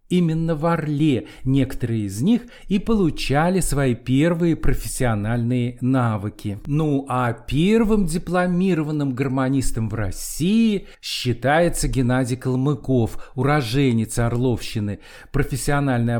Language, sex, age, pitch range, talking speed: Russian, male, 50-69, 120-155 Hz, 95 wpm